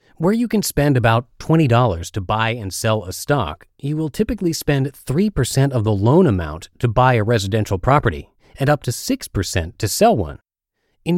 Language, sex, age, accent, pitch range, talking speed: English, male, 30-49, American, 100-140 Hz, 180 wpm